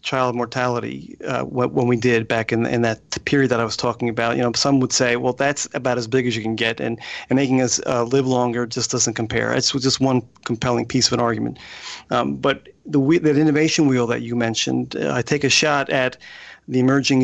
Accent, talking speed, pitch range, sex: American, 225 wpm, 120-135 Hz, male